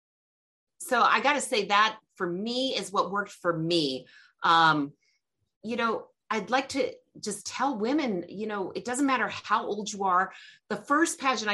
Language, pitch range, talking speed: English, 170-235 Hz, 170 wpm